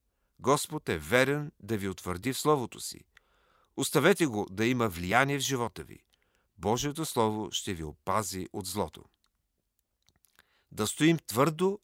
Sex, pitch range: male, 100-130 Hz